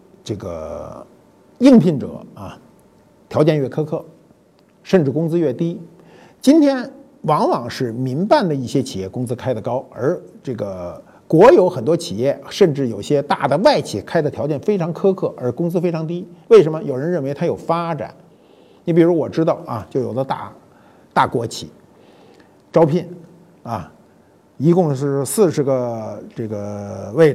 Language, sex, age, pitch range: Chinese, male, 50-69, 130-175 Hz